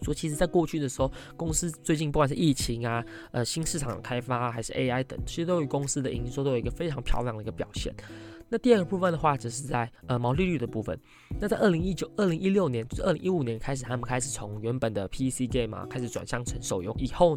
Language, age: Chinese, 20-39